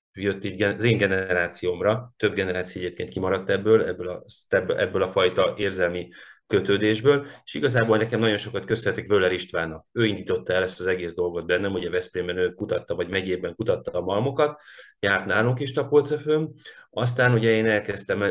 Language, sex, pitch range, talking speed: Hungarian, male, 90-130 Hz, 155 wpm